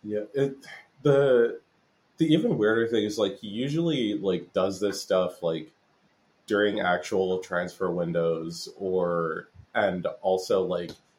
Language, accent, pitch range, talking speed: English, American, 90-105 Hz, 130 wpm